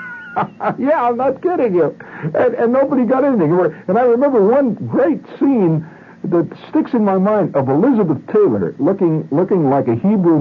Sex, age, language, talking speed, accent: male, 60-79, English, 165 wpm, American